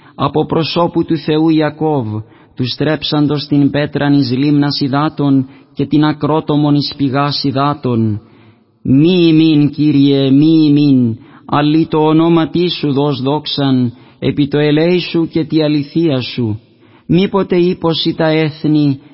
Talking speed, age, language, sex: 120 wpm, 30-49, Greek, male